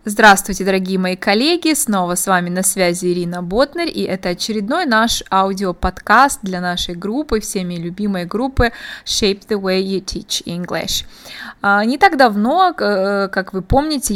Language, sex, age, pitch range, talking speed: Russian, female, 20-39, 185-230 Hz, 145 wpm